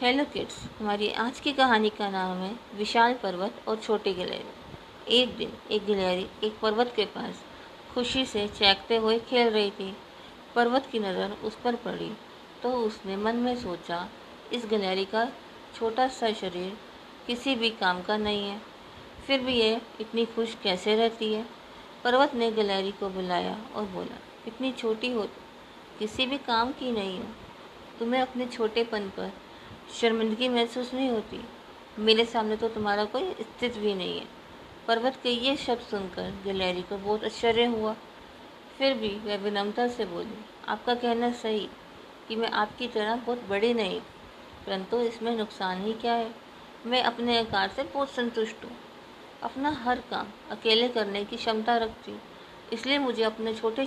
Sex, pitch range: female, 210-240 Hz